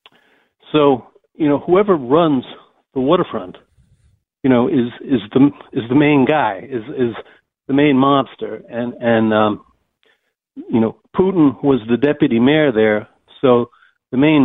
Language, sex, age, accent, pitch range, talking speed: English, male, 60-79, American, 115-145 Hz, 145 wpm